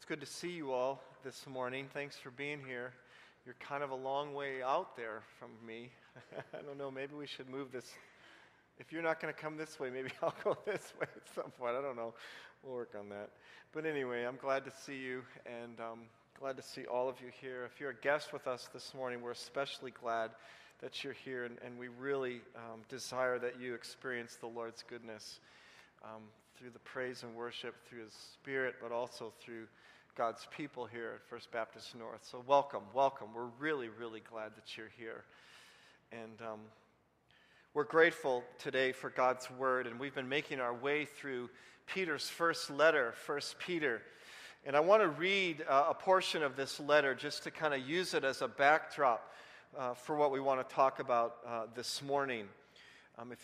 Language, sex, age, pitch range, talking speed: English, male, 40-59, 120-140 Hz, 200 wpm